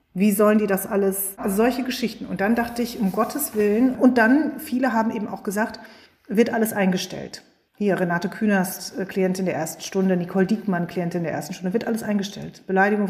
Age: 30-49